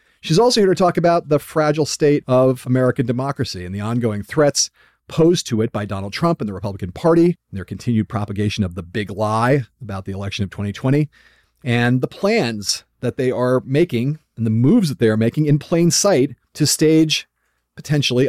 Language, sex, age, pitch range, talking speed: English, male, 40-59, 95-140 Hz, 190 wpm